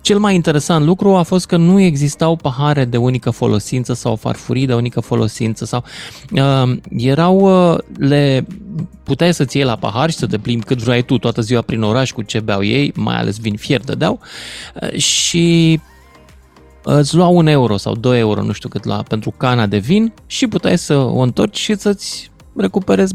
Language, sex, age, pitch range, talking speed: Romanian, male, 20-39, 110-165 Hz, 195 wpm